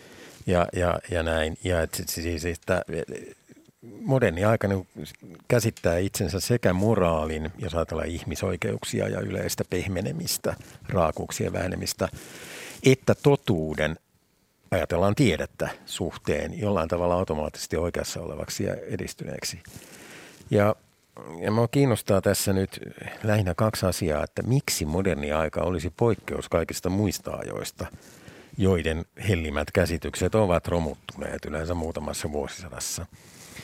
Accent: native